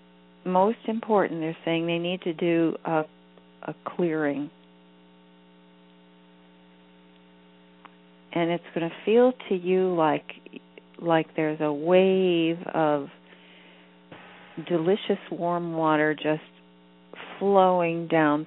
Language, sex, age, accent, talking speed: English, female, 50-69, American, 95 wpm